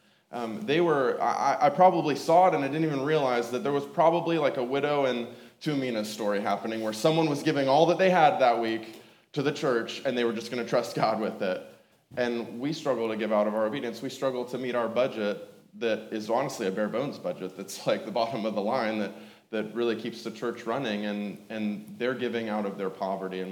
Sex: male